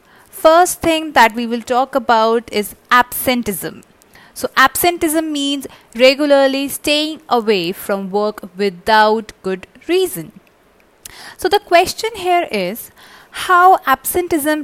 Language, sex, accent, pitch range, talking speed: English, female, Indian, 220-305 Hz, 110 wpm